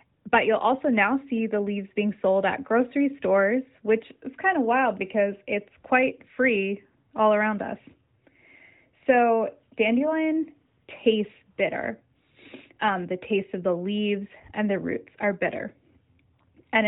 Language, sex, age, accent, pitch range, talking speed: English, female, 20-39, American, 190-240 Hz, 140 wpm